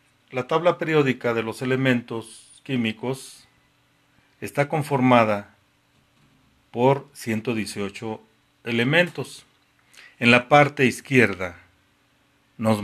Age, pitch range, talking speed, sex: 40-59, 115-140 Hz, 80 wpm, male